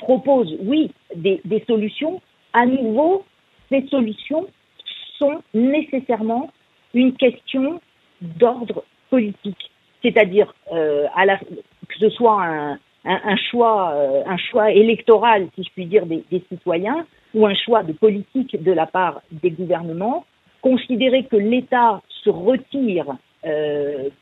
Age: 50-69